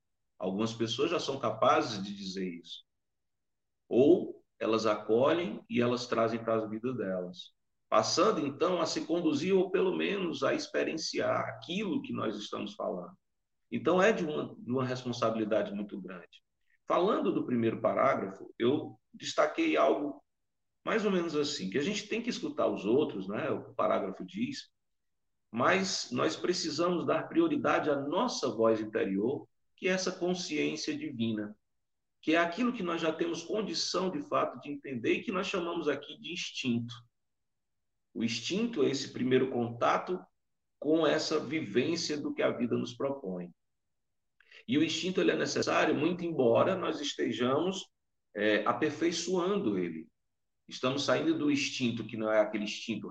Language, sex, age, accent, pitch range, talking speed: Portuguese, male, 50-69, Brazilian, 110-170 Hz, 155 wpm